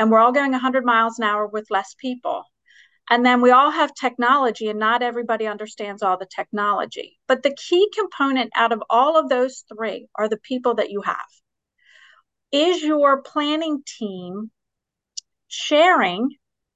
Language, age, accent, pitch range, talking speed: English, 40-59, American, 220-275 Hz, 160 wpm